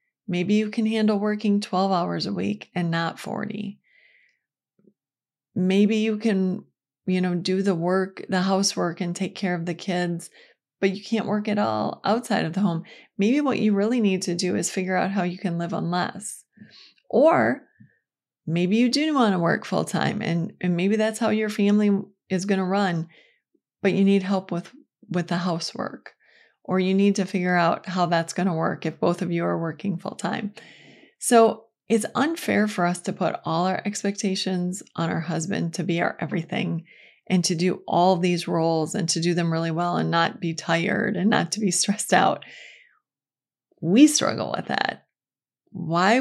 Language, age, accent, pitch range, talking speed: English, 30-49, American, 175-210 Hz, 185 wpm